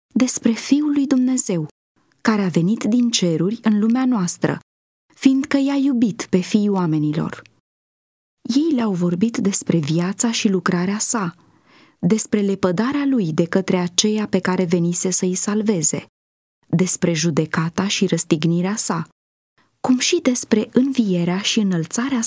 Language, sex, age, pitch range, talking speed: English, female, 20-39, 180-245 Hz, 130 wpm